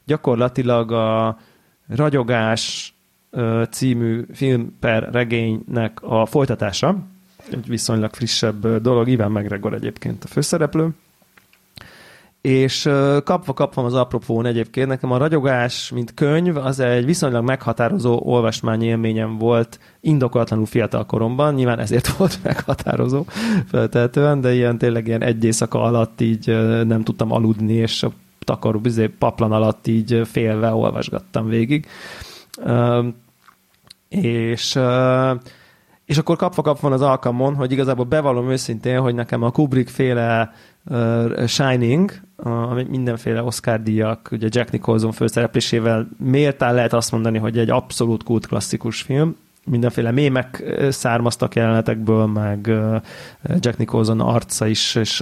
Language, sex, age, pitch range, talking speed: Hungarian, male, 30-49, 115-135 Hz, 115 wpm